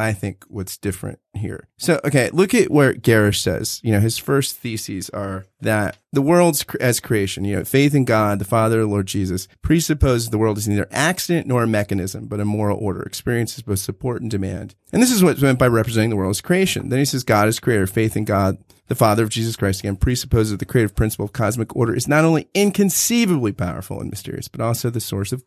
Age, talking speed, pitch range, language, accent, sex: 30-49, 230 wpm, 100-125 Hz, English, American, male